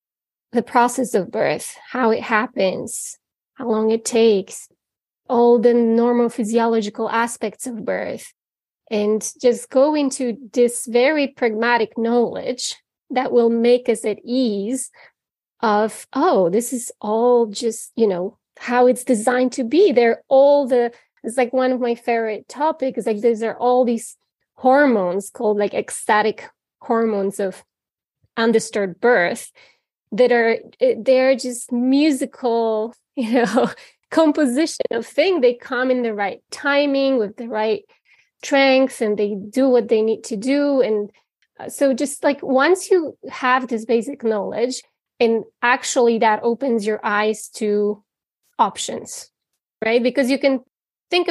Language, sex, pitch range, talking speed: English, female, 225-260 Hz, 140 wpm